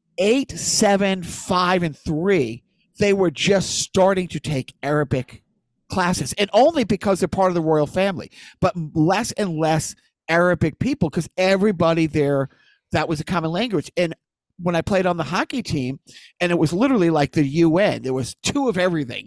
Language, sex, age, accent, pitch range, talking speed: English, male, 50-69, American, 150-195 Hz, 175 wpm